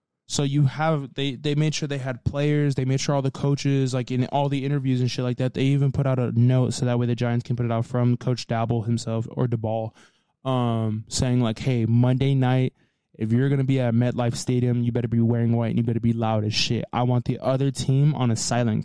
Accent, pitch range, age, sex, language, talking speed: American, 115-140 Hz, 20-39, male, English, 260 wpm